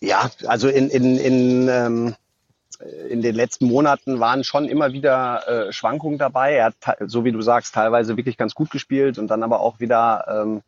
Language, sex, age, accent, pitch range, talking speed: German, male, 30-49, German, 125-155 Hz, 195 wpm